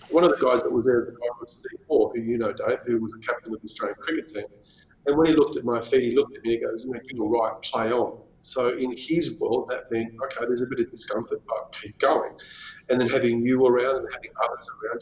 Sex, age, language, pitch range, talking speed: male, 40-59, English, 115-160 Hz, 260 wpm